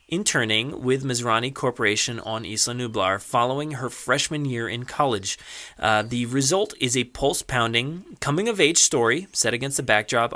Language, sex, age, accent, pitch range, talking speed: English, male, 30-49, American, 115-145 Hz, 145 wpm